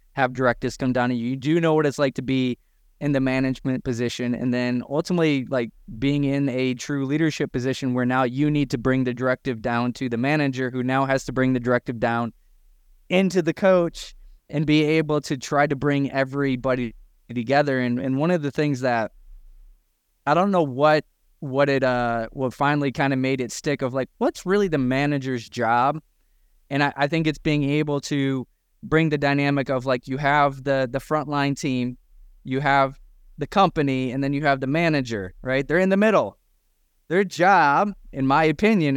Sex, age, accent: male, 20-39, American